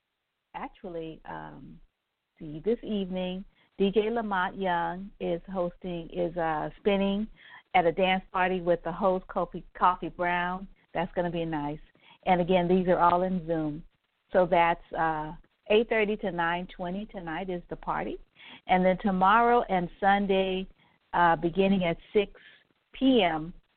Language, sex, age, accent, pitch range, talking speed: English, female, 50-69, American, 170-200 Hz, 140 wpm